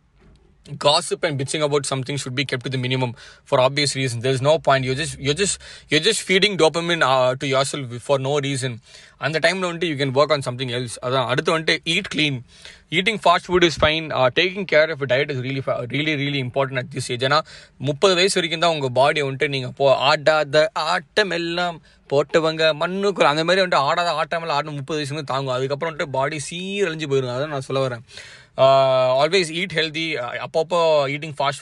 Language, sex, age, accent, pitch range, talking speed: Tamil, male, 20-39, native, 130-165 Hz, 195 wpm